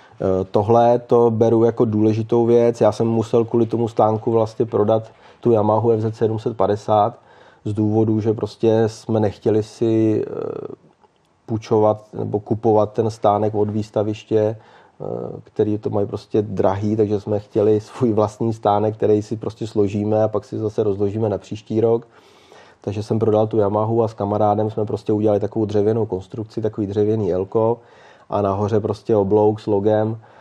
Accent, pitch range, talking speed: native, 100-110 Hz, 155 wpm